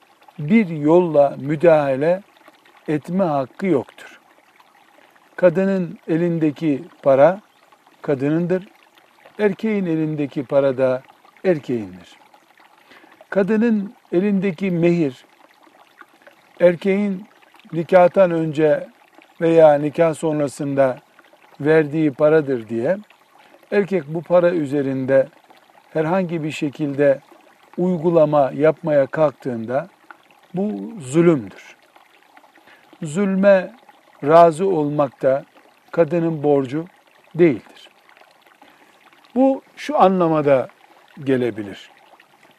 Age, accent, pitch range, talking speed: 60-79, native, 145-195 Hz, 70 wpm